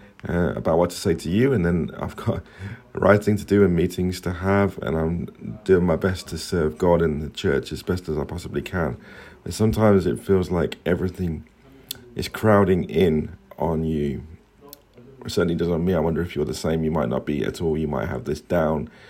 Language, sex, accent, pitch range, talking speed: English, male, British, 80-105 Hz, 210 wpm